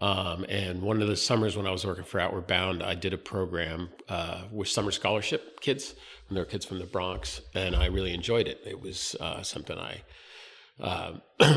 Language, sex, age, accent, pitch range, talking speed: English, male, 40-59, American, 90-110 Hz, 205 wpm